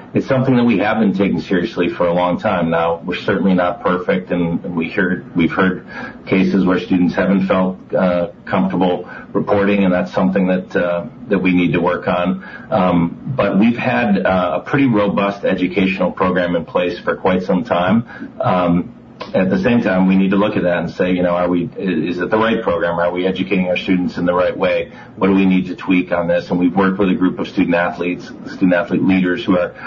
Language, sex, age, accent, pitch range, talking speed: English, male, 40-59, American, 90-95 Hz, 215 wpm